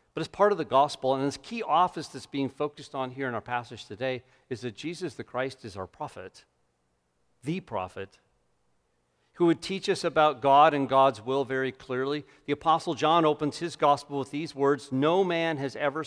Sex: male